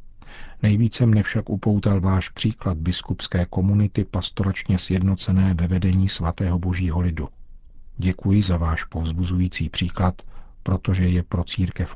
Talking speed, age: 120 wpm, 50-69